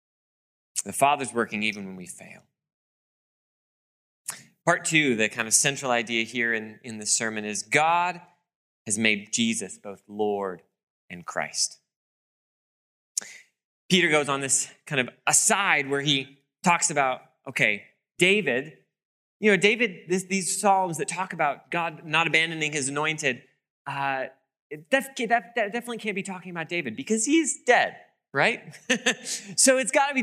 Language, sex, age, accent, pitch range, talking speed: English, male, 20-39, American, 125-185 Hz, 145 wpm